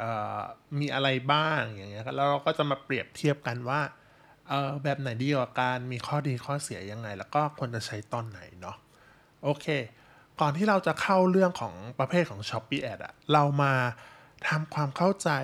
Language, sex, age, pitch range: Thai, male, 20-39, 120-155 Hz